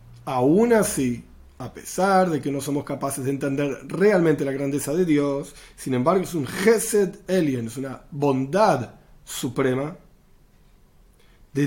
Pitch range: 140-190 Hz